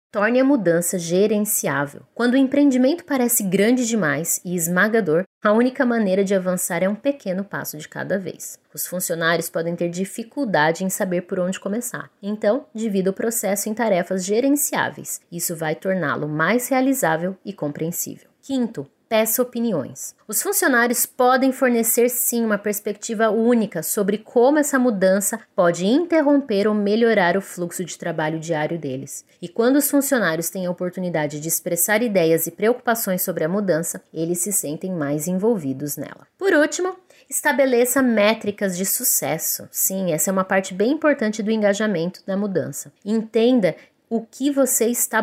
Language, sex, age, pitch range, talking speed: Portuguese, female, 20-39, 180-240 Hz, 155 wpm